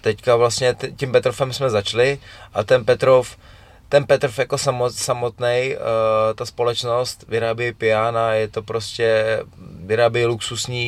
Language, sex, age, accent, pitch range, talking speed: Czech, male, 20-39, native, 105-120 Hz, 130 wpm